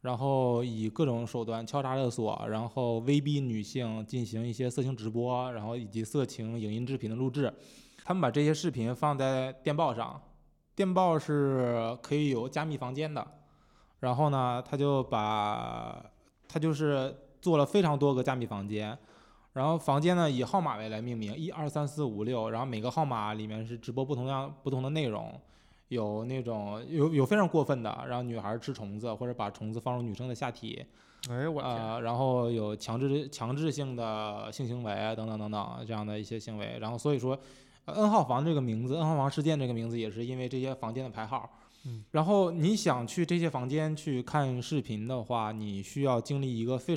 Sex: male